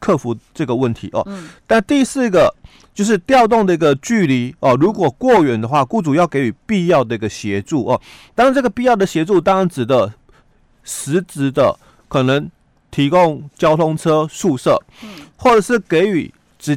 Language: Chinese